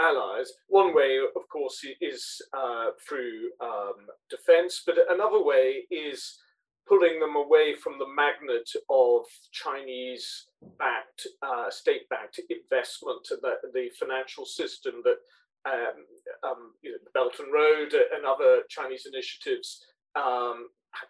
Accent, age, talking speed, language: British, 40-59, 120 wpm, English